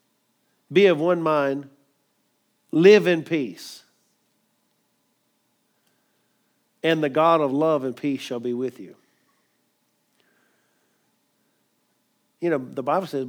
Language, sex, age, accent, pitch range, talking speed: English, male, 50-69, American, 140-185 Hz, 105 wpm